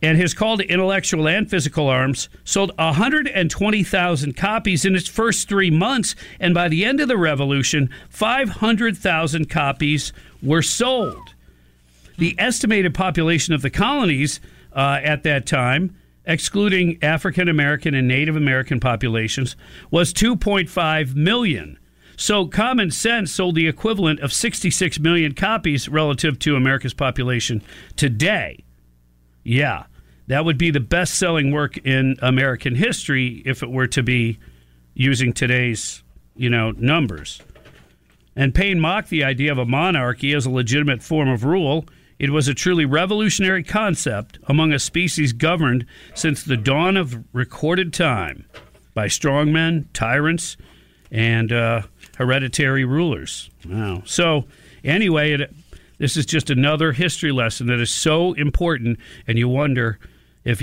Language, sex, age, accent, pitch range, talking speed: English, male, 50-69, American, 125-165 Hz, 135 wpm